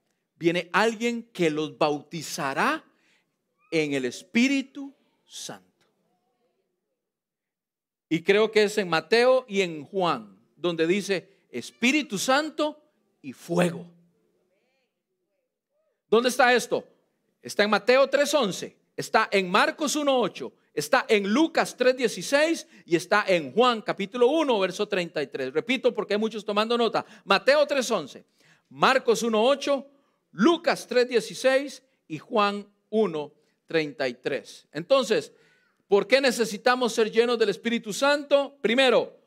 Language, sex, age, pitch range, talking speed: Spanish, male, 40-59, 185-260 Hz, 110 wpm